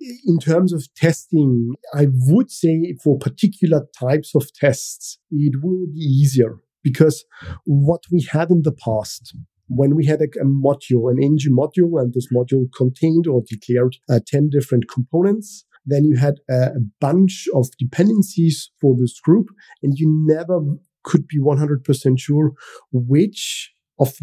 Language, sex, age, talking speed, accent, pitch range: English, male, 50-69, 155 wpm, German, 125-160 Hz